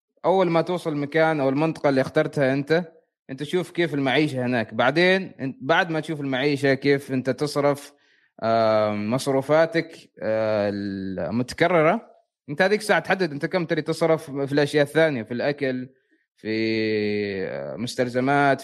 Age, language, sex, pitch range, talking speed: 20-39, Arabic, male, 135-175 Hz, 125 wpm